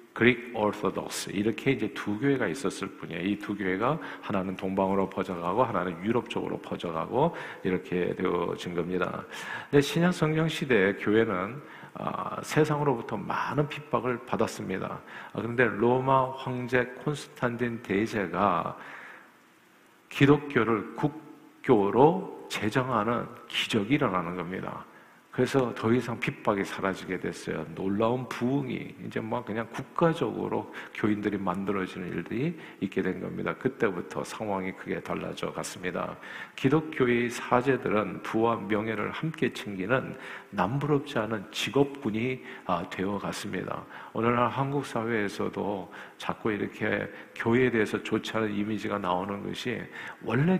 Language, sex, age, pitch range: Korean, male, 50-69, 100-130 Hz